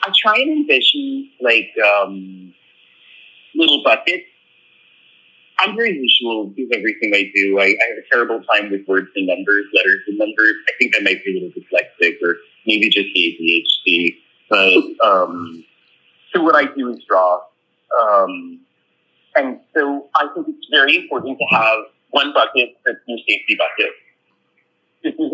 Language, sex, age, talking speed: English, male, 40-59, 155 wpm